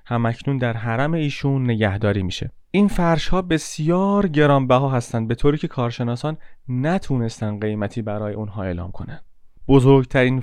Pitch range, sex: 115-140 Hz, male